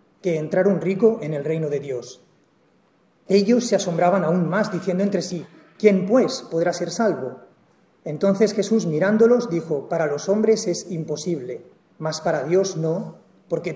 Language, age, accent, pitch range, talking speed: English, 30-49, Spanish, 170-205 Hz, 155 wpm